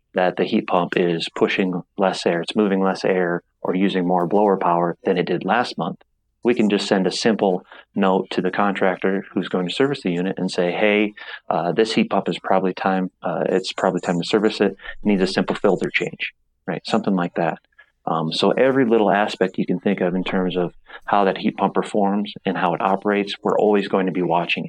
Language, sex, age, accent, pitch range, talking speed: English, male, 30-49, American, 90-100 Hz, 225 wpm